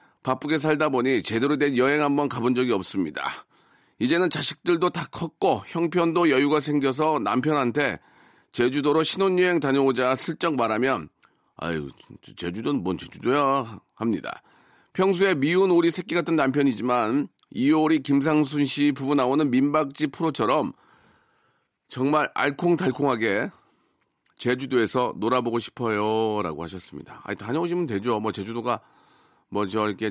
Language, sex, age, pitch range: Korean, male, 40-59, 110-150 Hz